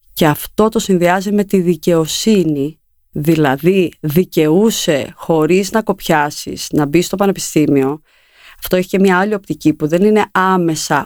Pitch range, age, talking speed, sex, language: 160-210 Hz, 30-49, 140 wpm, female, Greek